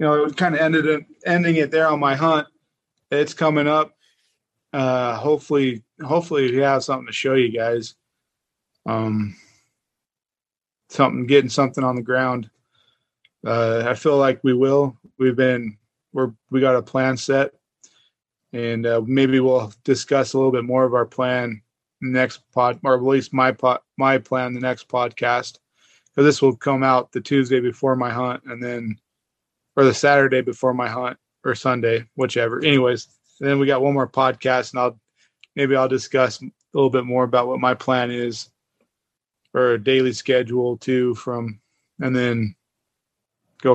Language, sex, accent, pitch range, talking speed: English, male, American, 125-140 Hz, 170 wpm